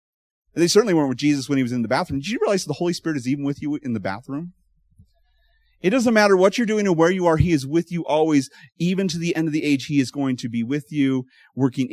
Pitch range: 110-150 Hz